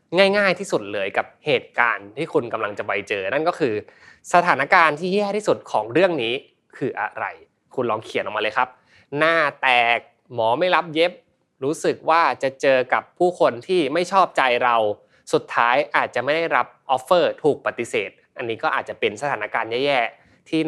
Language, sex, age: Thai, male, 20-39